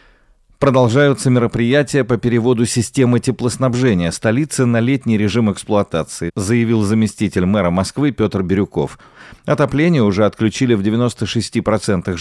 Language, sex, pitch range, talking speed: Russian, male, 100-130 Hz, 110 wpm